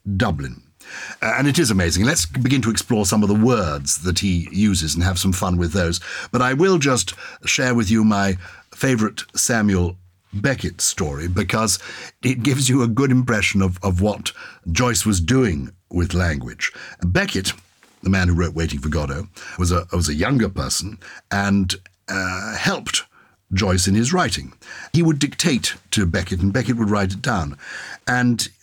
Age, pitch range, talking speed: 60-79, 95-130 Hz, 175 wpm